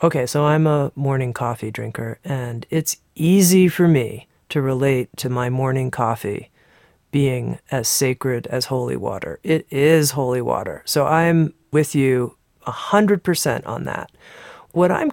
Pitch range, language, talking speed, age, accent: 125-155 Hz, English, 145 wpm, 40-59, American